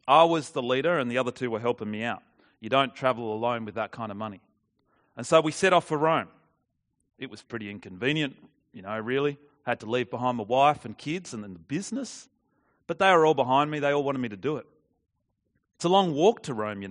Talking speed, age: 240 wpm, 30-49